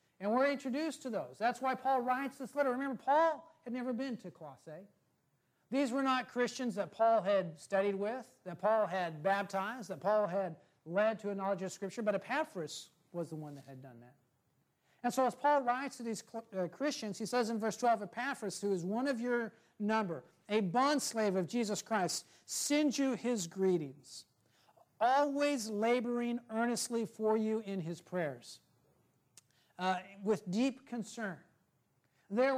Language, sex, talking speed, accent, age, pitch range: English, male, 170 wpm, American, 50-69, 180-245 Hz